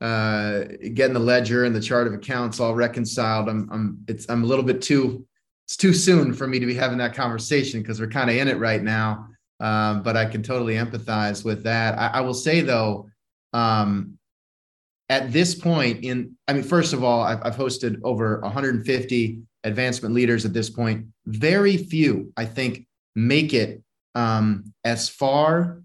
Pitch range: 115-140 Hz